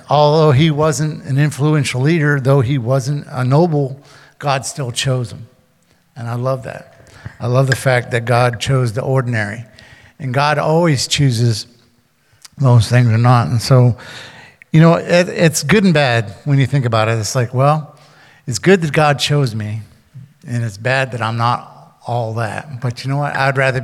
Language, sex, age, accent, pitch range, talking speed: English, male, 50-69, American, 120-145 Hz, 180 wpm